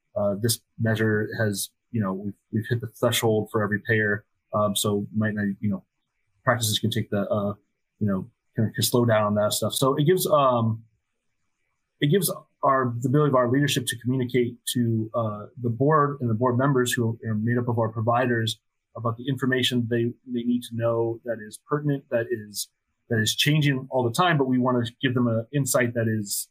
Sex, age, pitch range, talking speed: male, 30-49, 110-125 Hz, 210 wpm